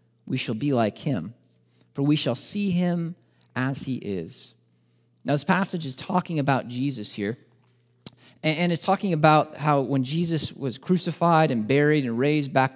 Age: 30-49